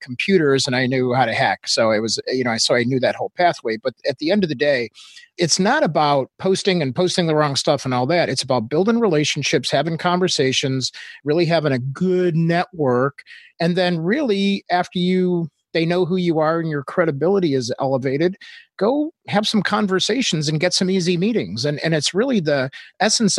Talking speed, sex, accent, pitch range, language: 205 wpm, male, American, 140-180 Hz, English